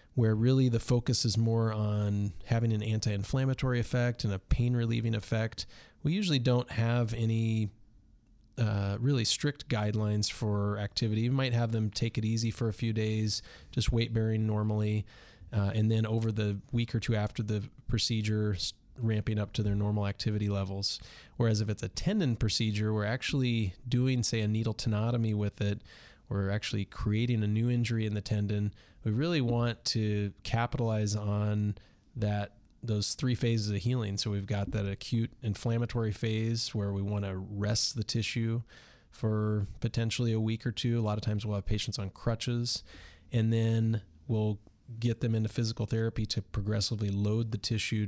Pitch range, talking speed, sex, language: 105-115 Hz, 170 wpm, male, English